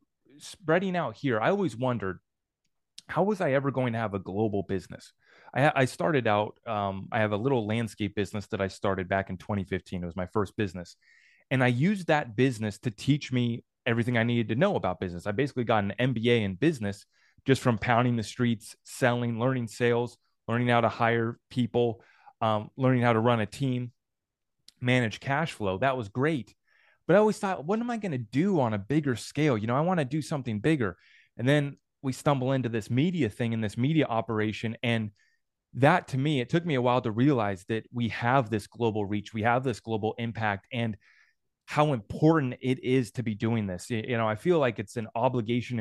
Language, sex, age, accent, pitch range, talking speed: English, male, 30-49, American, 110-140 Hz, 210 wpm